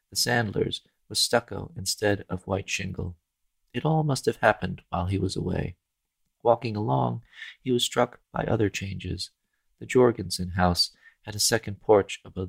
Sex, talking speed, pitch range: male, 160 wpm, 95-110 Hz